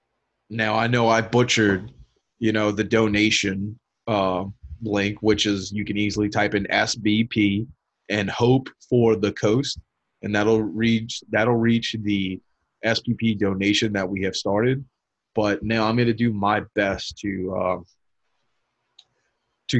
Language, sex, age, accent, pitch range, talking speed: English, male, 30-49, American, 100-120 Hz, 140 wpm